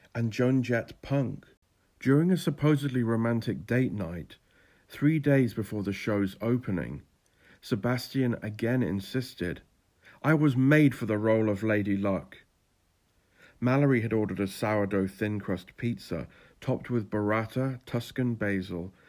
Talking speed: 130 wpm